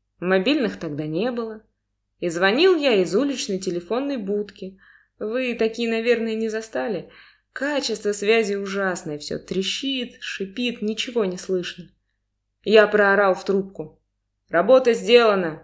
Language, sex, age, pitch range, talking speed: Russian, female, 20-39, 160-230 Hz, 120 wpm